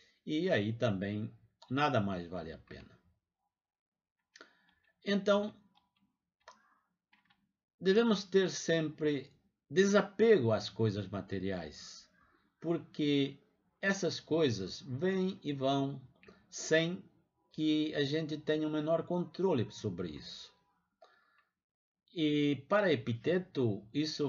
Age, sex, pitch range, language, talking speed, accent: 60-79, male, 110-160 Hz, Portuguese, 90 wpm, Brazilian